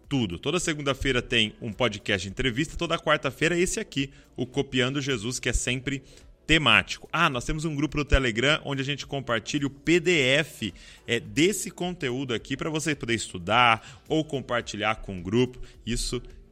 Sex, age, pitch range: male, 30-49, 115-150 Hz